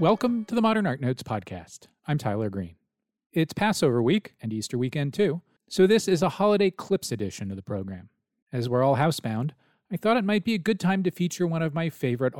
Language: English